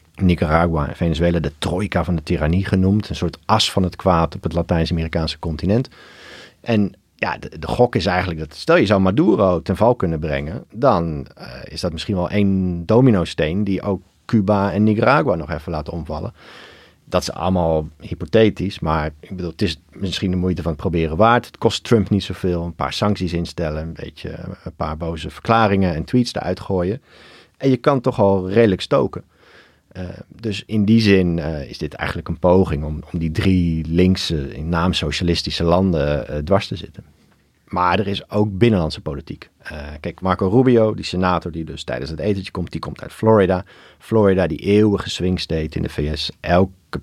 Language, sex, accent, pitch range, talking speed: Dutch, male, Dutch, 80-100 Hz, 190 wpm